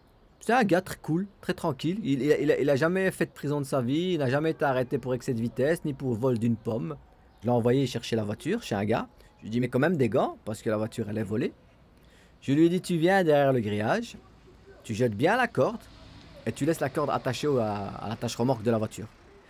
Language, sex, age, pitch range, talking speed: French, male, 40-59, 110-145 Hz, 250 wpm